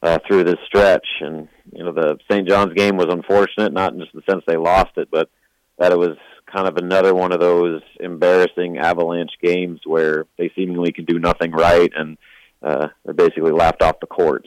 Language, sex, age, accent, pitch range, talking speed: English, male, 40-59, American, 85-110 Hz, 205 wpm